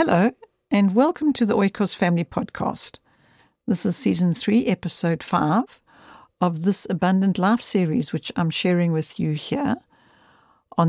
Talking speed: 145 wpm